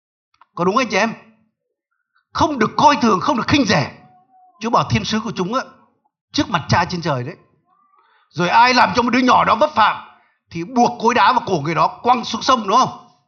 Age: 60-79